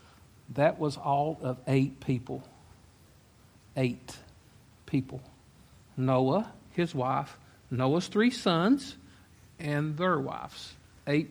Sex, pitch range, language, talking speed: male, 120-155 Hz, English, 95 wpm